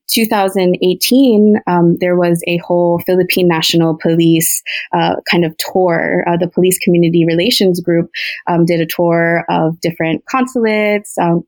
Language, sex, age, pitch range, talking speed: English, female, 20-39, 170-195 Hz, 140 wpm